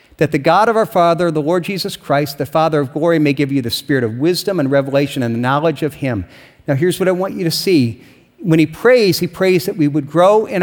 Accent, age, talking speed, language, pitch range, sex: American, 50-69, 260 wpm, English, 155-195 Hz, male